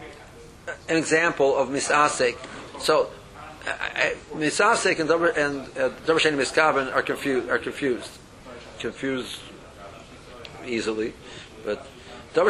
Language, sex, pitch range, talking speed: English, male, 130-170 Hz, 85 wpm